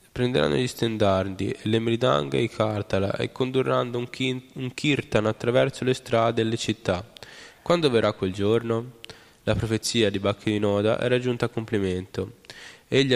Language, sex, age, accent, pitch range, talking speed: Italian, male, 10-29, native, 105-120 Hz, 150 wpm